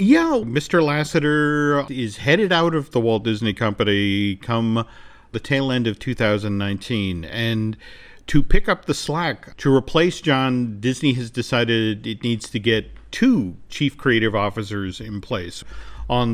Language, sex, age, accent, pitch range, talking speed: English, male, 40-59, American, 110-145 Hz, 145 wpm